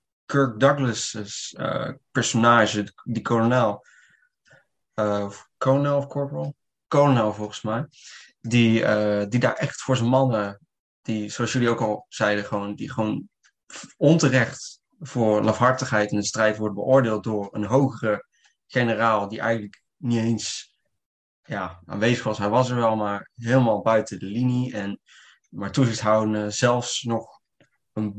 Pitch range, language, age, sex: 110-130 Hz, Dutch, 20-39, male